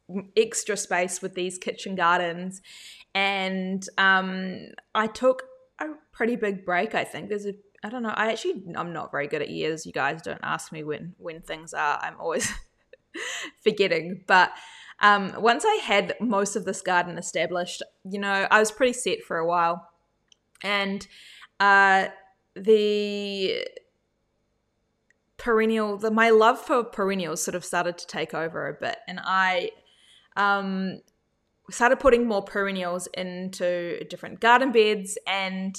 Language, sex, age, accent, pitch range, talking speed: English, female, 20-39, Australian, 180-220 Hz, 150 wpm